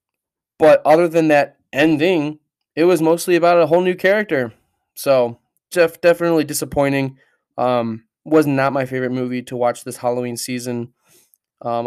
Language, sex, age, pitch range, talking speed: English, male, 20-39, 120-135 Hz, 145 wpm